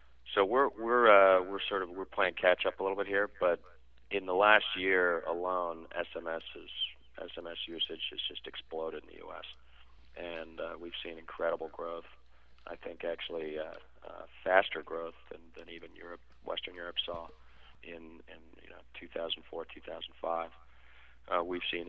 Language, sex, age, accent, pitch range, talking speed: English, male, 40-59, American, 80-90 Hz, 160 wpm